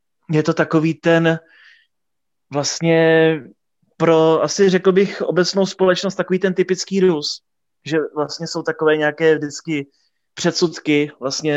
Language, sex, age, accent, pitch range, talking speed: Czech, male, 20-39, native, 140-165 Hz, 120 wpm